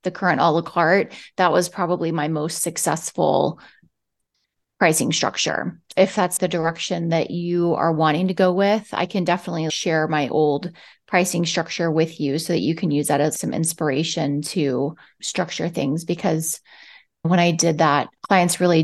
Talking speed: 170 wpm